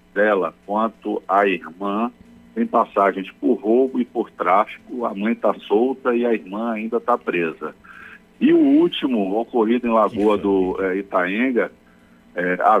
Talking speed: 140 wpm